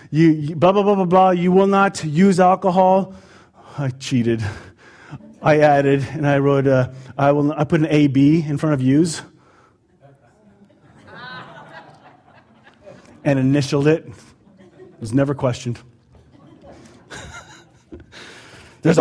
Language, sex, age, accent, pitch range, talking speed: English, male, 30-49, American, 120-185 Hz, 115 wpm